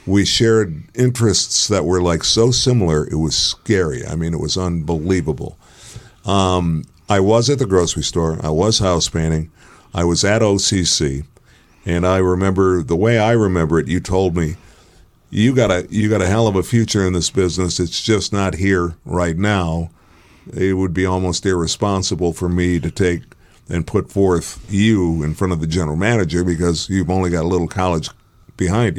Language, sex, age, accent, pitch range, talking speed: English, male, 50-69, American, 85-105 Hz, 180 wpm